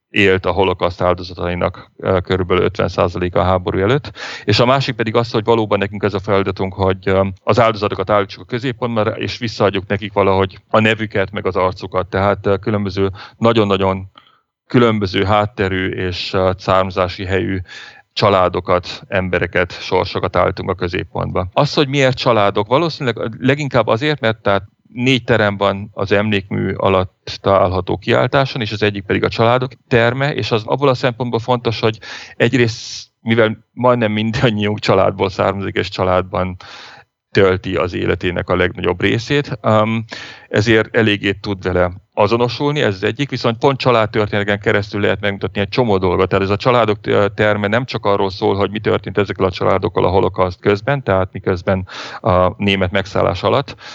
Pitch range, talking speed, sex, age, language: 95-115 Hz, 150 wpm, male, 40-59, Hungarian